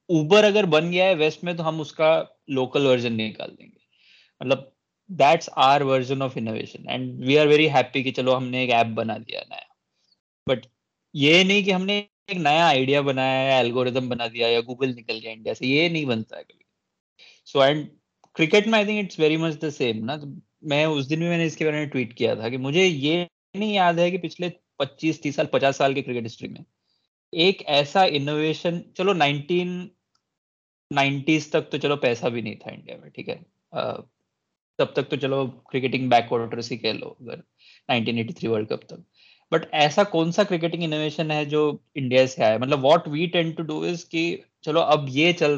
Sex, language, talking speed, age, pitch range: male, Urdu, 85 wpm, 20-39, 130-165 Hz